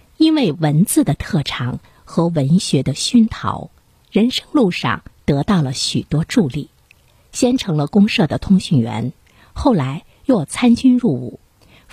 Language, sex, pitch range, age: Chinese, female, 145-235 Hz, 50-69